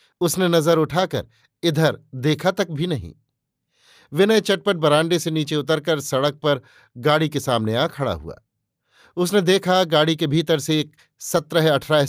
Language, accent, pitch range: Hindi, native, 135-175 Hz